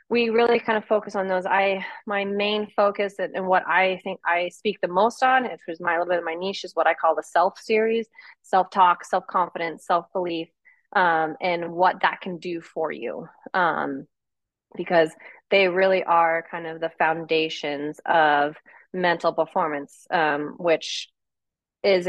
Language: English